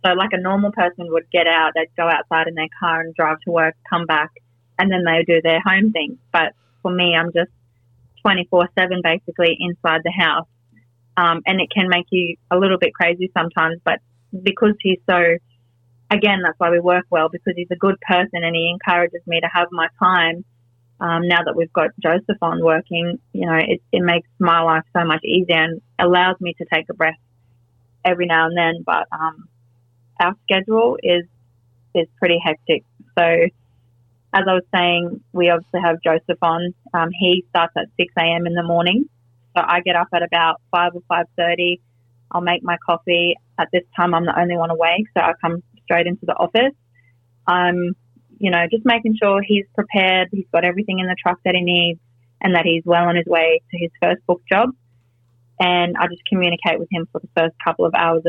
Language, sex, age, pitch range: English, female, 30-49, 160-180 Hz